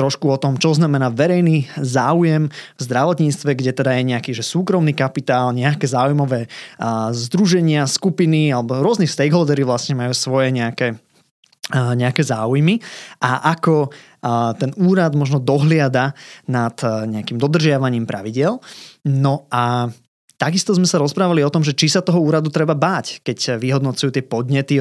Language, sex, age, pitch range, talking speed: Slovak, male, 20-39, 130-165 Hz, 140 wpm